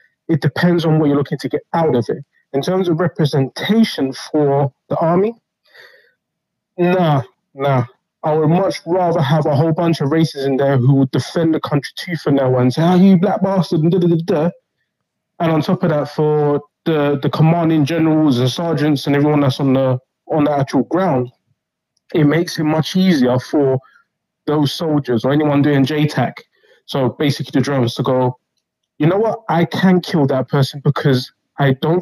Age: 20-39